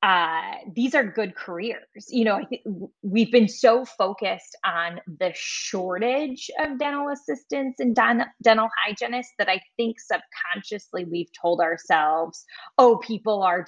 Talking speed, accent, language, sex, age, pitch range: 145 wpm, American, English, female, 20-39, 175-230 Hz